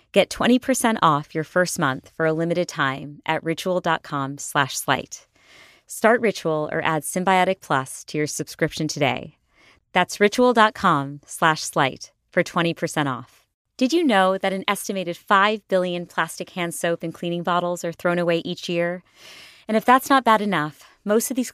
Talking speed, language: 165 wpm, English